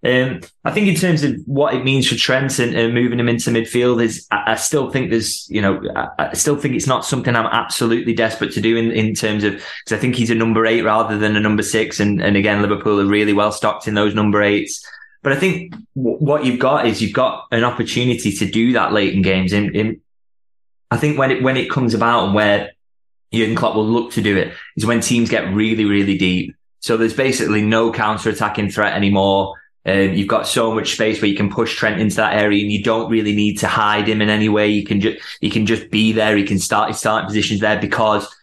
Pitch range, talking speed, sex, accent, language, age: 105-115 Hz, 250 wpm, male, British, English, 20-39